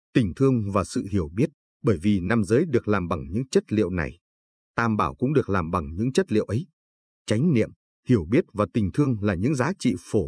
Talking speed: 230 wpm